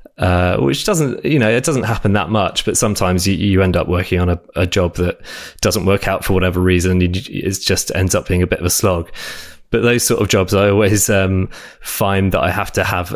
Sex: male